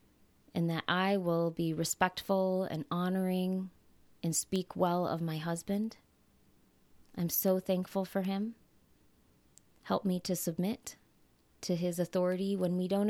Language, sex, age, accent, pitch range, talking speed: English, female, 20-39, American, 170-190 Hz, 135 wpm